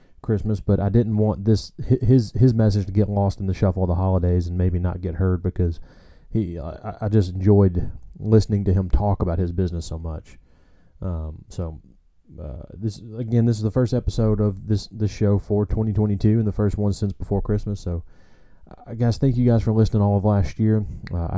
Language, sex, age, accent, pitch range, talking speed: English, male, 30-49, American, 90-105 Hz, 210 wpm